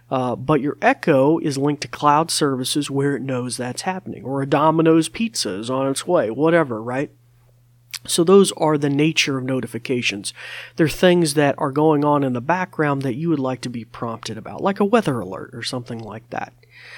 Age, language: 40-59, English